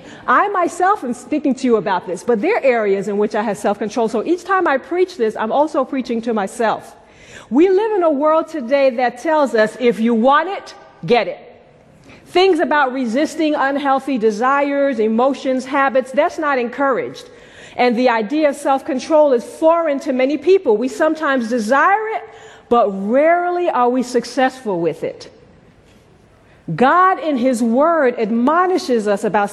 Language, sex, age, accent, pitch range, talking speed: English, female, 40-59, American, 235-325 Hz, 165 wpm